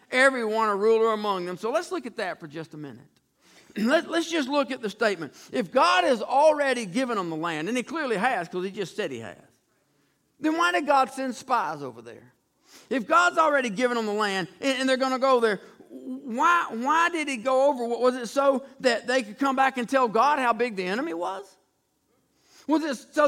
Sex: male